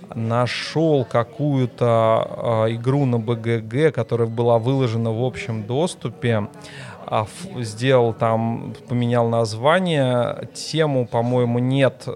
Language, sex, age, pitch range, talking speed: Russian, male, 20-39, 115-140 Hz, 90 wpm